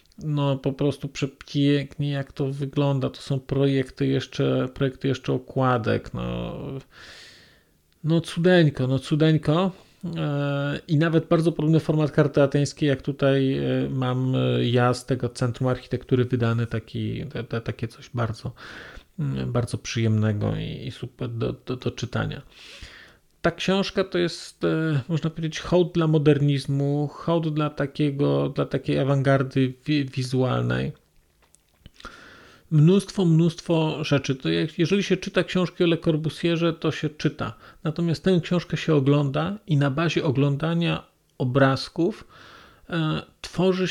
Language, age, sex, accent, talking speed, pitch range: Polish, 40-59, male, native, 120 wpm, 125-160 Hz